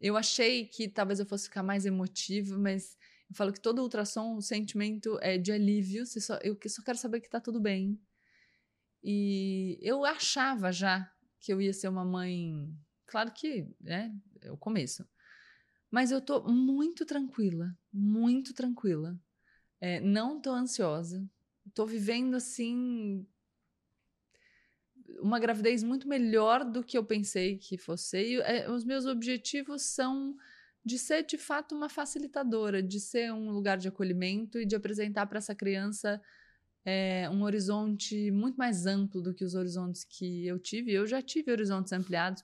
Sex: female